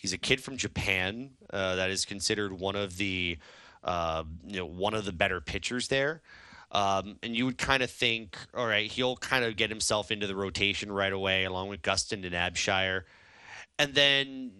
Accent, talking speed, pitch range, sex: American, 190 wpm, 90-115 Hz, male